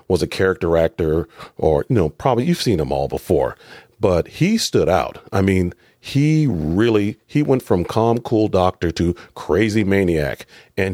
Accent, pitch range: American, 90-115 Hz